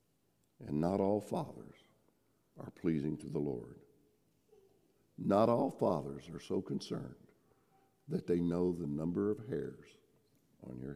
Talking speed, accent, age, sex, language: 130 wpm, American, 60-79, male, English